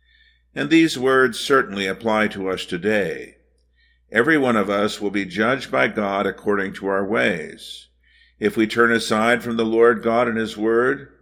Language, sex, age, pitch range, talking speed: English, male, 50-69, 105-130 Hz, 170 wpm